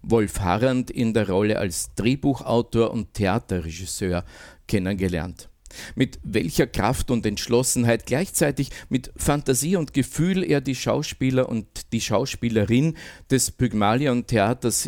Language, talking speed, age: German, 115 wpm, 50-69